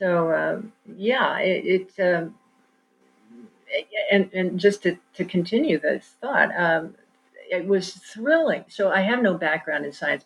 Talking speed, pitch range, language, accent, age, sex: 145 wpm, 160-210 Hz, English, American, 50-69, female